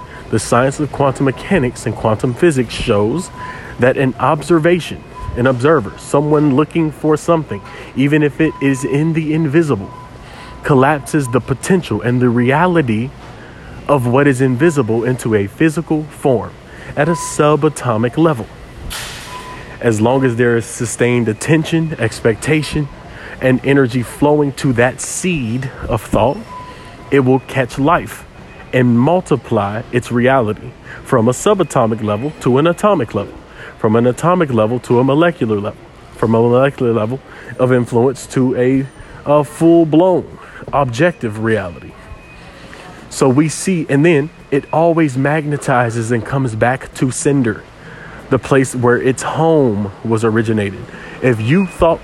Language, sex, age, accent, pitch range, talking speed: English, male, 30-49, American, 120-150 Hz, 135 wpm